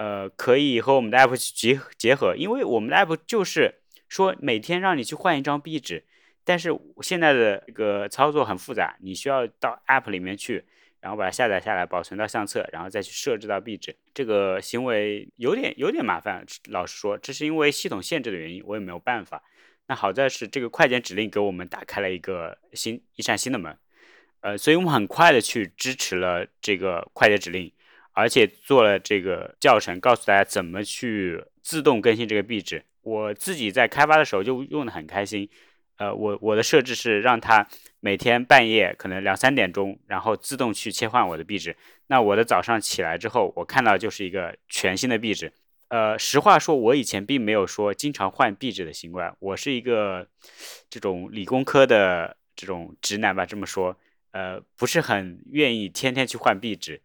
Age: 20-39